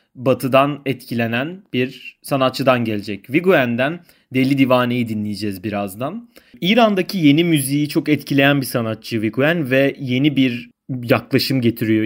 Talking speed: 115 wpm